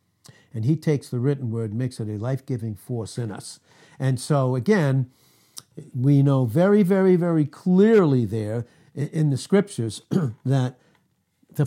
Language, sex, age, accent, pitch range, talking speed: English, male, 60-79, American, 125-175 Hz, 145 wpm